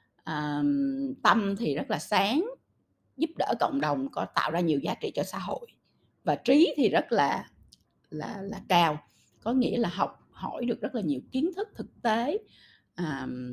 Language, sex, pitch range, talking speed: Vietnamese, female, 160-260 Hz, 180 wpm